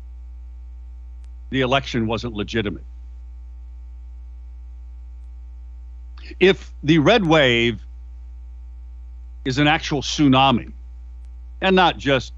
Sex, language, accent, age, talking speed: male, English, American, 50-69, 75 wpm